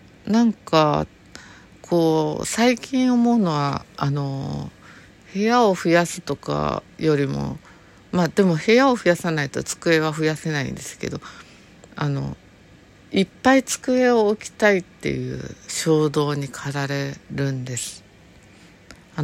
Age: 50-69